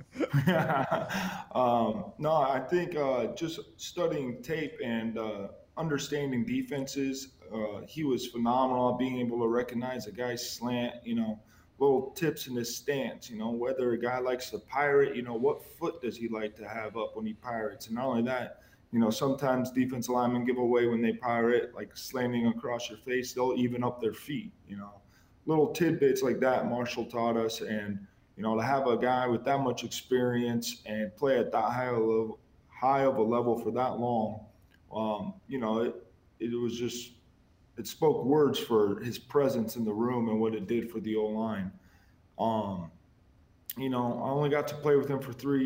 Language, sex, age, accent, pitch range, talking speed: English, male, 20-39, American, 115-130 Hz, 195 wpm